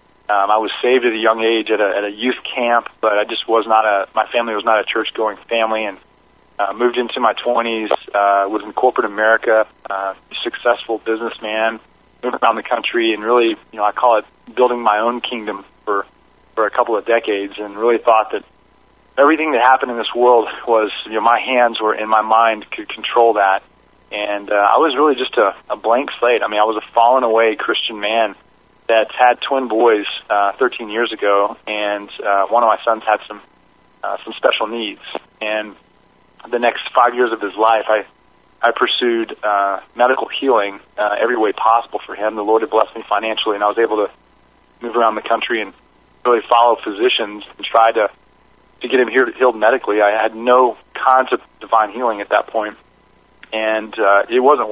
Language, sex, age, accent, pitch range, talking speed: English, male, 30-49, American, 105-120 Hz, 205 wpm